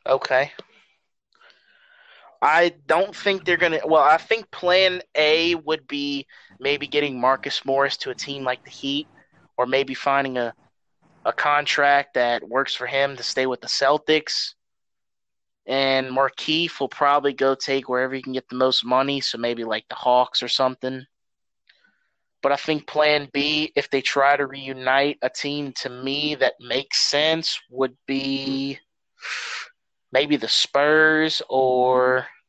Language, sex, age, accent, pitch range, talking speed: English, male, 20-39, American, 130-155 Hz, 150 wpm